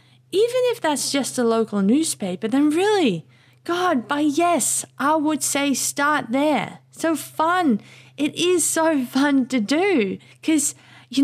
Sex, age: female, 20-39